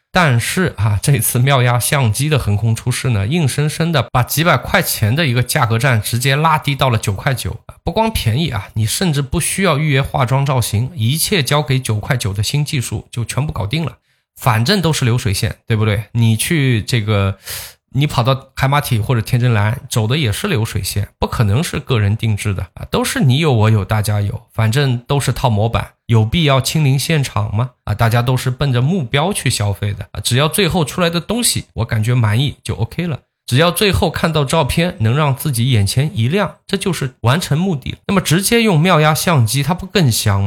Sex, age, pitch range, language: male, 20-39, 110-150 Hz, Chinese